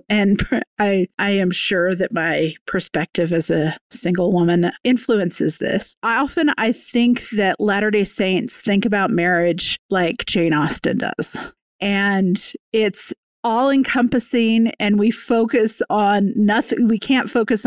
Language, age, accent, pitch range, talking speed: English, 40-59, American, 195-240 Hz, 130 wpm